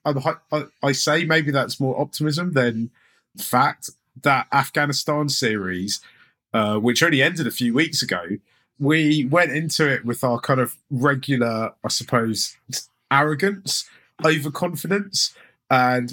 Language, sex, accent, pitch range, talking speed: English, male, British, 105-135 Hz, 125 wpm